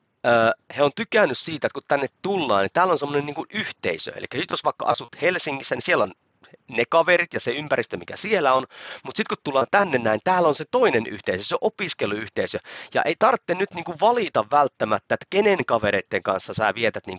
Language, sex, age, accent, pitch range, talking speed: Finnish, male, 30-49, native, 115-170 Hz, 190 wpm